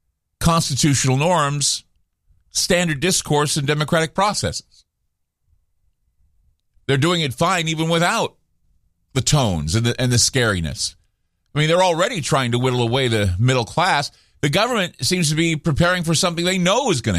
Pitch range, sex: 90-150 Hz, male